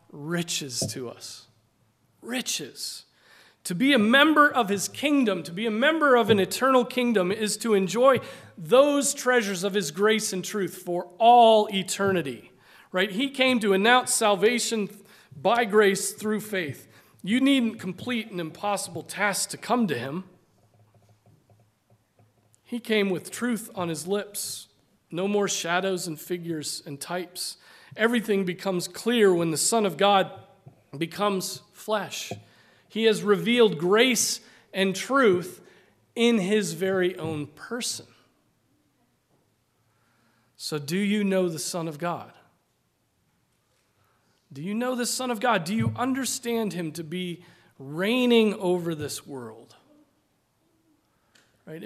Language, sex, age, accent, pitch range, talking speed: English, male, 40-59, American, 145-220 Hz, 130 wpm